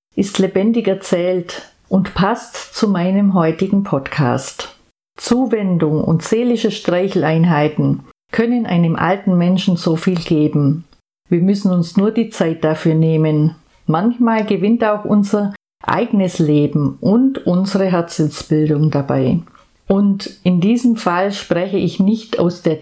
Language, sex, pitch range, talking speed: German, female, 165-215 Hz, 125 wpm